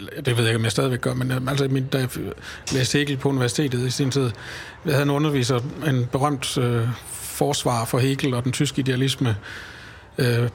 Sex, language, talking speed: male, Danish, 195 wpm